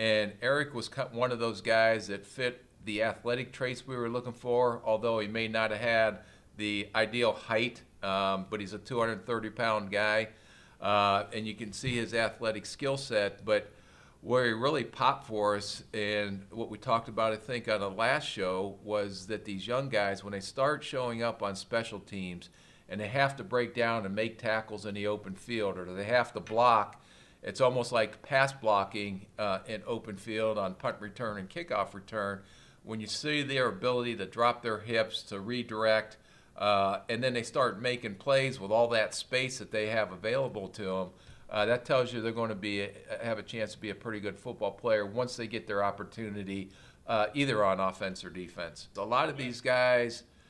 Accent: American